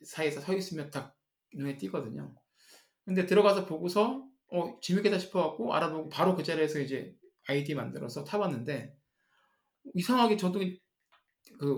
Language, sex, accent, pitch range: Korean, male, native, 135-190 Hz